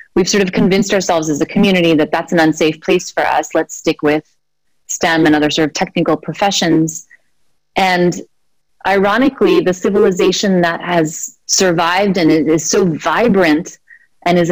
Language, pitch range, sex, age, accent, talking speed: Hindi, 165-225 Hz, female, 30-49, American, 155 wpm